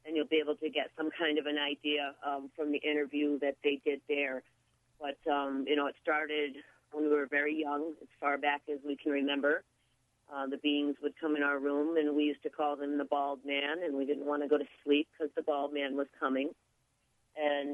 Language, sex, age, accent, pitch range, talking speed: English, female, 40-59, American, 140-155 Hz, 235 wpm